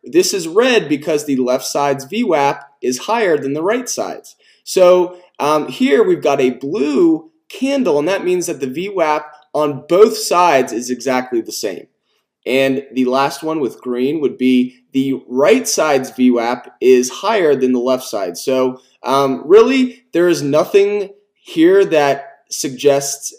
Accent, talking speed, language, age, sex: American, 160 wpm, English, 20-39, male